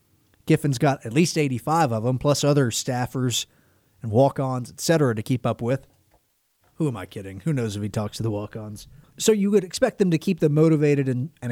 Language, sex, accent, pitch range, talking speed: English, male, American, 115-165 Hz, 215 wpm